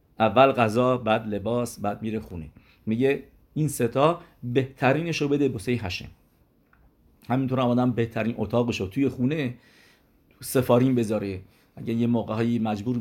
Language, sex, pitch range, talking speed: English, male, 110-135 Hz, 125 wpm